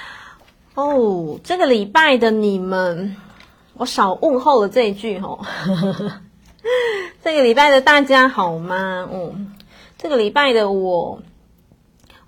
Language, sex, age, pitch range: Chinese, female, 30-49, 185-235 Hz